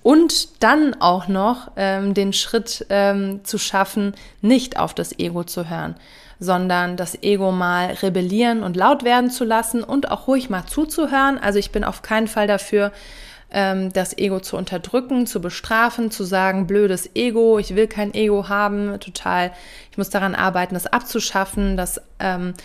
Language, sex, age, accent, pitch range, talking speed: German, female, 20-39, German, 195-240 Hz, 165 wpm